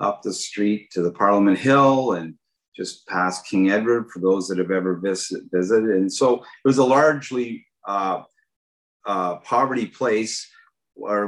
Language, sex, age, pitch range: English, male, 40-59, 95-120 Hz